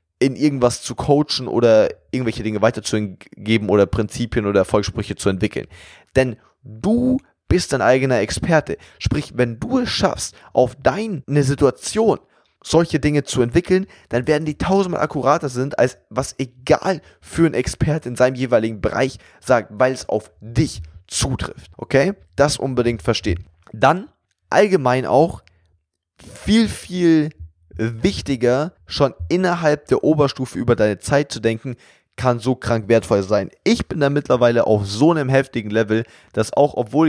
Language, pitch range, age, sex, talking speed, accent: German, 110-145 Hz, 20-39, male, 145 wpm, German